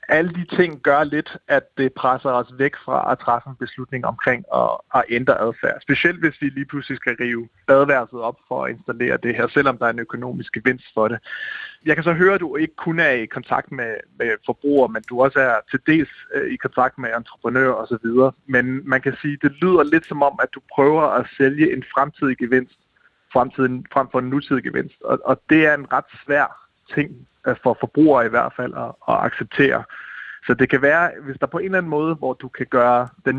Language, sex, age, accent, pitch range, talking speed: Danish, male, 30-49, native, 125-150 Hz, 215 wpm